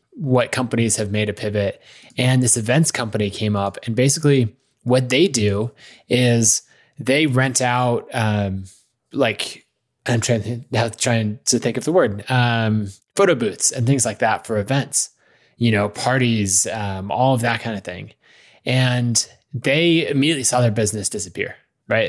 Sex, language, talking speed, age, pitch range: male, English, 160 wpm, 20-39, 100-125 Hz